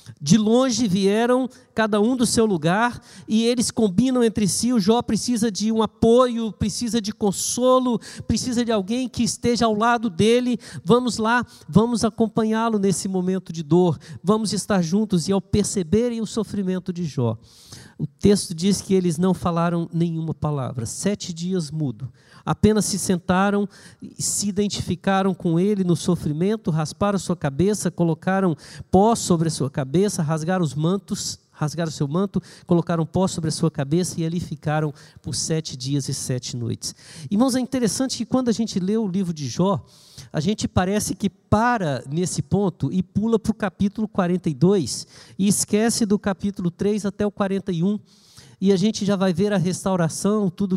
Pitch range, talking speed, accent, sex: 170-220 Hz, 170 wpm, Brazilian, male